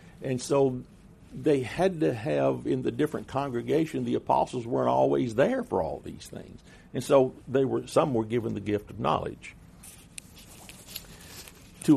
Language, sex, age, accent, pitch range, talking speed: English, male, 60-79, American, 100-150 Hz, 155 wpm